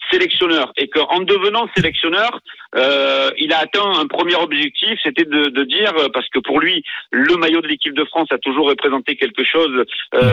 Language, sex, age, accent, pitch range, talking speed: French, male, 50-69, French, 150-200 Hz, 185 wpm